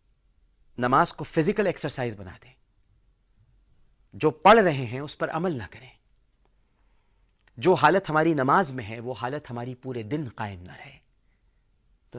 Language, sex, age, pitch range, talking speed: Urdu, male, 40-59, 105-150 Hz, 150 wpm